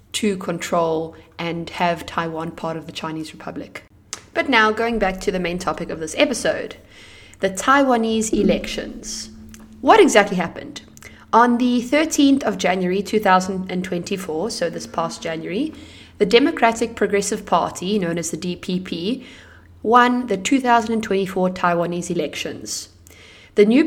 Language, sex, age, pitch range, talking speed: Italian, female, 20-39, 170-225 Hz, 130 wpm